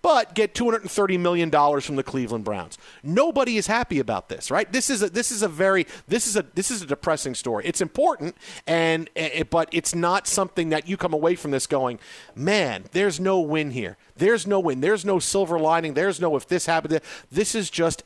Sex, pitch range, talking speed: male, 150-210 Hz, 215 wpm